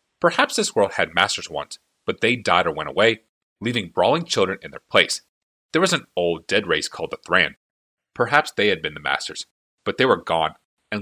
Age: 30-49